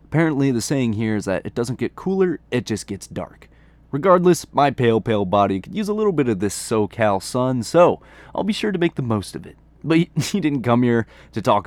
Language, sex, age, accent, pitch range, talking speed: English, male, 20-39, American, 100-150 Hz, 230 wpm